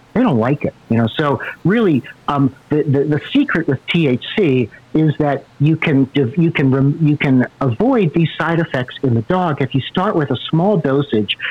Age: 50-69